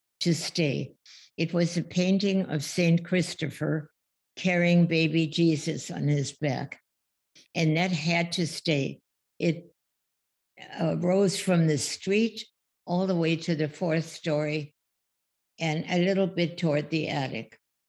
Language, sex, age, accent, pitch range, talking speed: English, female, 60-79, American, 150-180 Hz, 130 wpm